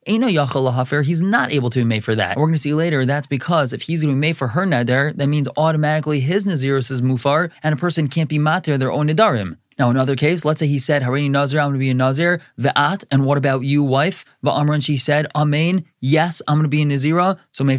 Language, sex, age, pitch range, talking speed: English, male, 20-39, 130-160 Hz, 260 wpm